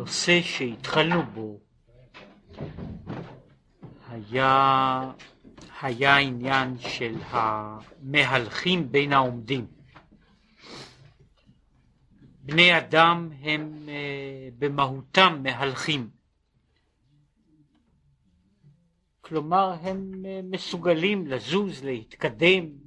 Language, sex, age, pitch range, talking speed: Hebrew, male, 50-69, 120-170 Hz, 50 wpm